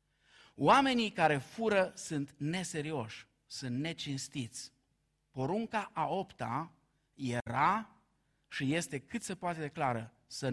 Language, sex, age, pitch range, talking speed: Romanian, male, 50-69, 145-235 Hz, 105 wpm